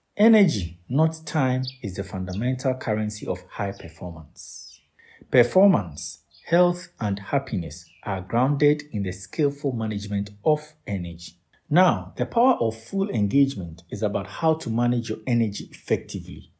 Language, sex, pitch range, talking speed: English, male, 100-150 Hz, 130 wpm